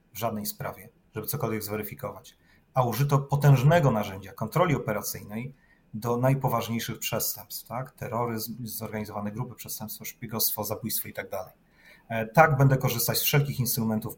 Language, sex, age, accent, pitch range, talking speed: Polish, male, 30-49, native, 110-145 Hz, 130 wpm